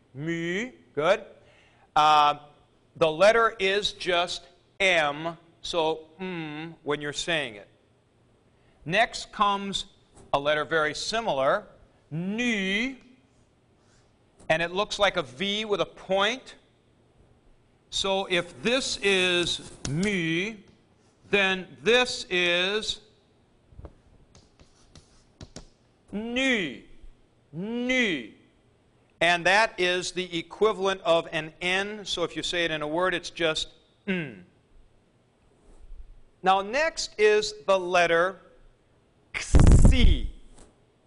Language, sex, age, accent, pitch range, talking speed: English, male, 50-69, American, 155-195 Hz, 95 wpm